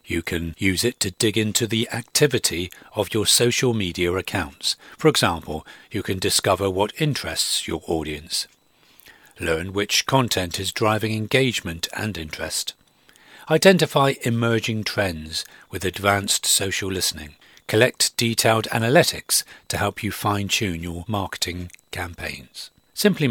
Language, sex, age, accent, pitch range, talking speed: English, male, 40-59, British, 90-115 Hz, 125 wpm